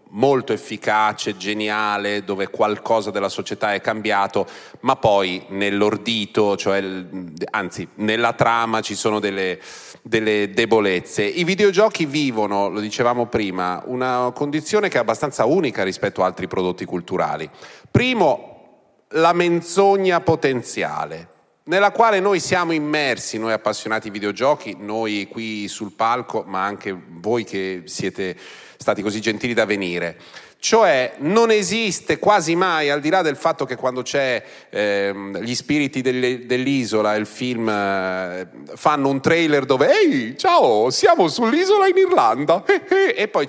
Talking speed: 135 wpm